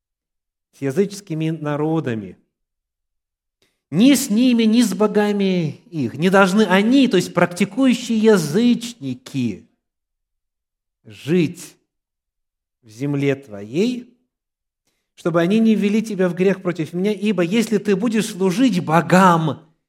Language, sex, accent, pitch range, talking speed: Russian, male, native, 135-210 Hz, 110 wpm